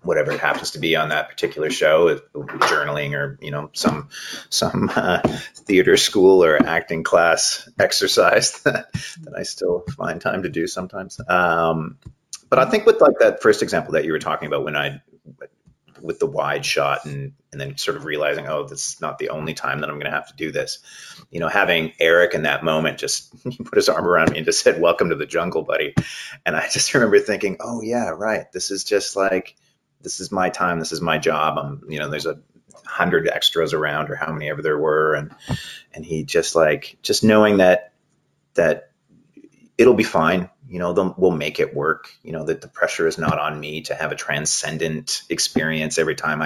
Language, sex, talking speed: English, male, 215 wpm